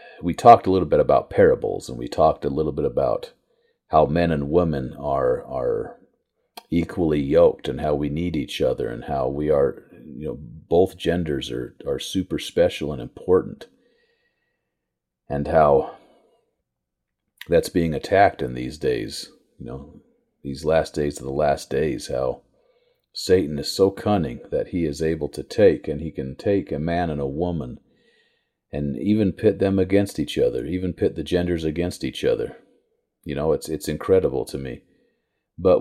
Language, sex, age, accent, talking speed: English, male, 40-59, American, 170 wpm